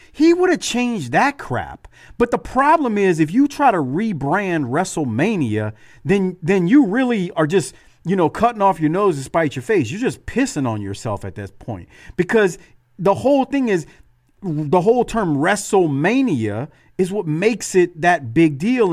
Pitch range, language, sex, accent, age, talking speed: 135-195 Hz, English, male, American, 40-59, 180 wpm